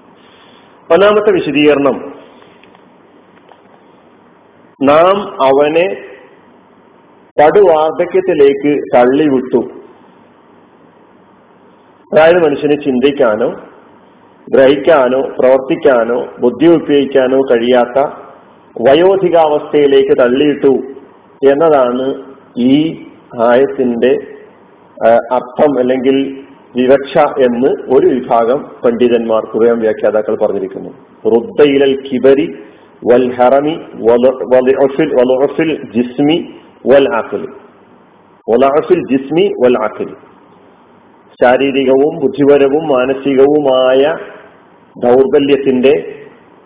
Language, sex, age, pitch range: Malayalam, male, 50-69, 125-150 Hz